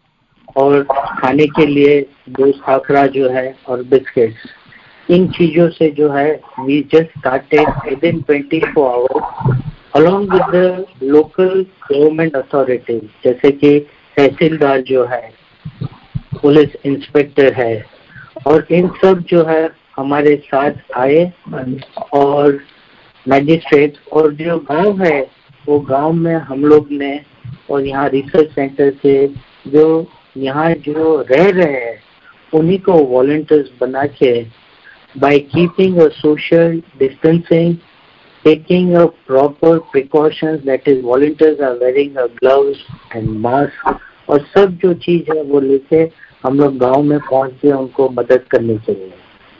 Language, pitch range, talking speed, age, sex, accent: Hindi, 135-160 Hz, 110 wpm, 50-69, female, native